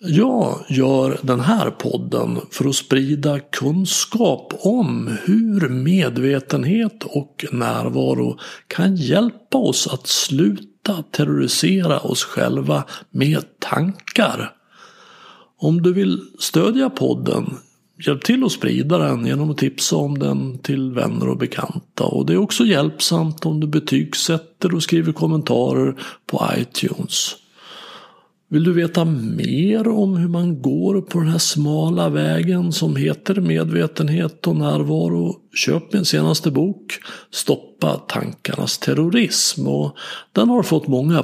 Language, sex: Swedish, male